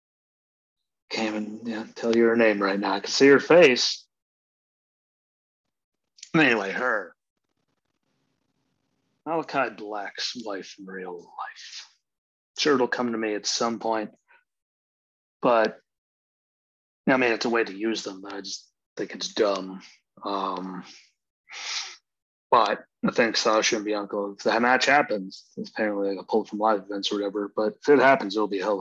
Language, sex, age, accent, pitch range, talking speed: English, male, 30-49, American, 100-115 Hz, 155 wpm